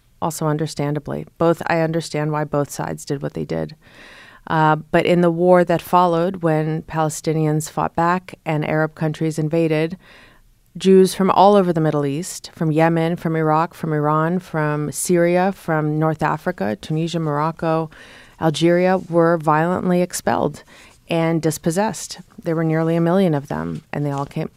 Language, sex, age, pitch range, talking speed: English, female, 30-49, 155-175 Hz, 155 wpm